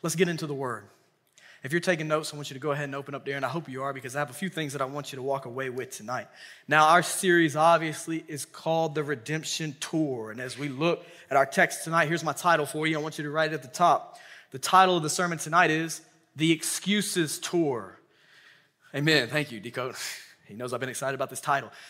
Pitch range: 145-190 Hz